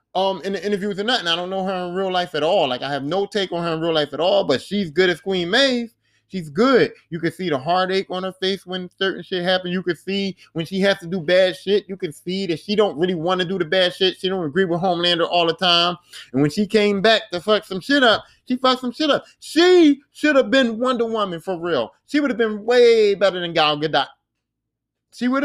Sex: male